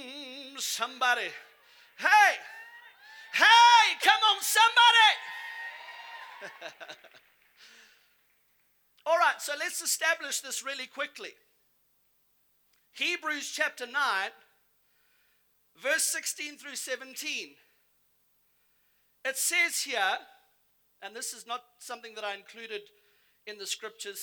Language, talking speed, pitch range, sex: English, 85 wpm, 230-350 Hz, male